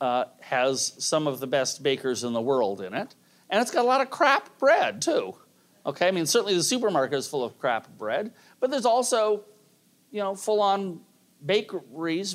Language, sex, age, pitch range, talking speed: English, male, 40-59, 130-205 Hz, 190 wpm